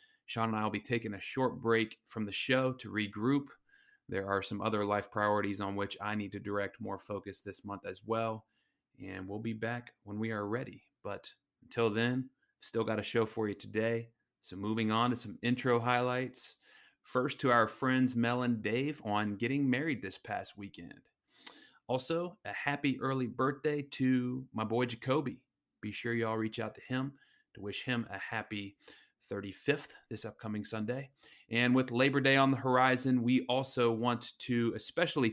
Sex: male